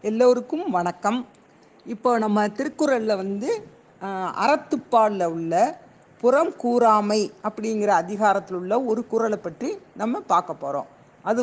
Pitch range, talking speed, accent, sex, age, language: 195-260 Hz, 105 wpm, native, female, 50-69, Tamil